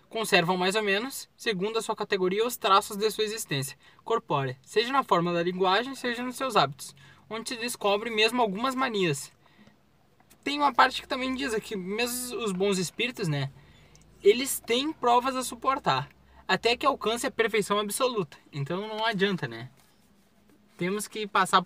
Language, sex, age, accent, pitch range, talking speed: Portuguese, male, 10-29, Brazilian, 180-230 Hz, 165 wpm